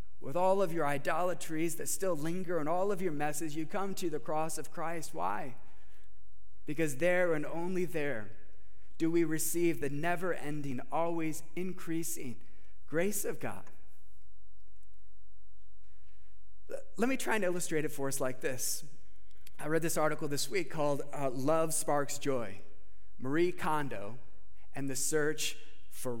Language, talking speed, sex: English, 140 wpm, male